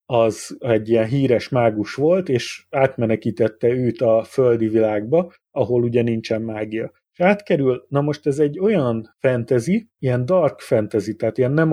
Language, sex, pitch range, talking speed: Hungarian, male, 115-135 Hz, 150 wpm